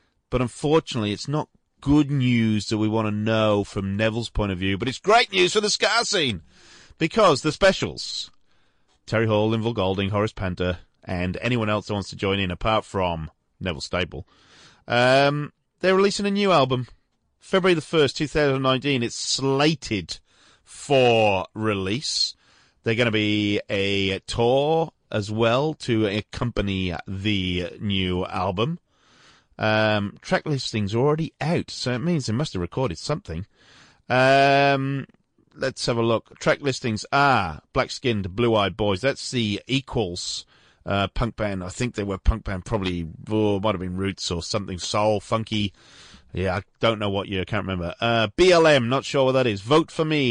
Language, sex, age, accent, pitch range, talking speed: English, male, 30-49, British, 100-130 Hz, 165 wpm